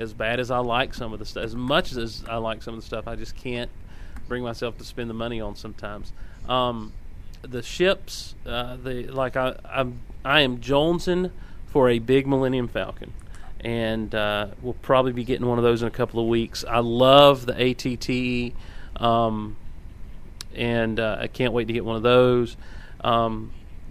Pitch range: 110-130 Hz